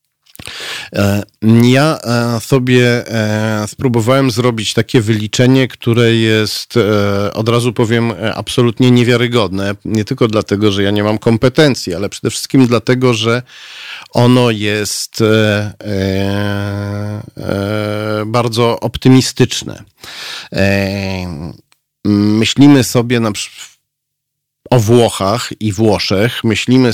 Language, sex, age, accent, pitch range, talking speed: Polish, male, 40-59, native, 100-120 Hz, 85 wpm